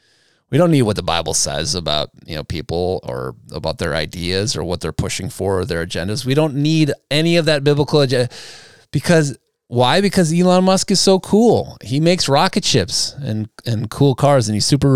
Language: English